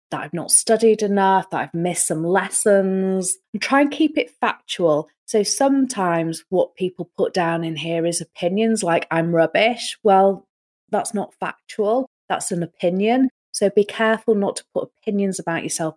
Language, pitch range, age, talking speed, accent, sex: English, 160-195 Hz, 30-49, 165 wpm, British, female